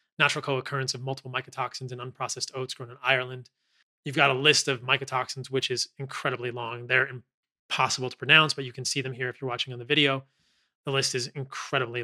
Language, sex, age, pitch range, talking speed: English, male, 30-49, 130-150 Hz, 205 wpm